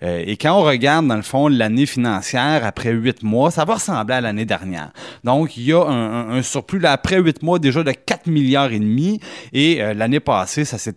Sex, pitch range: male, 110-145 Hz